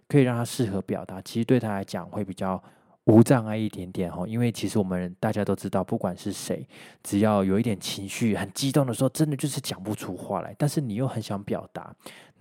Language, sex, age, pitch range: Chinese, male, 20-39, 95-115 Hz